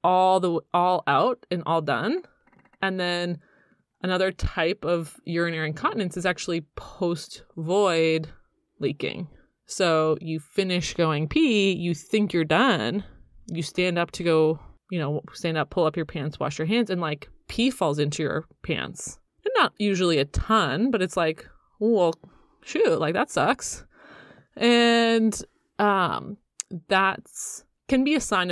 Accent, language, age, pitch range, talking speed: American, English, 20-39, 165-210 Hz, 150 wpm